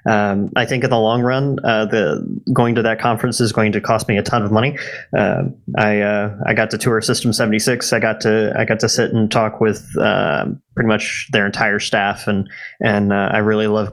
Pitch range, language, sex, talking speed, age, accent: 105-115 Hz, English, male, 230 wpm, 20-39, American